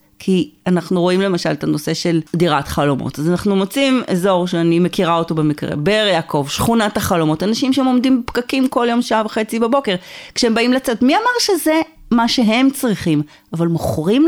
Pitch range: 170-235 Hz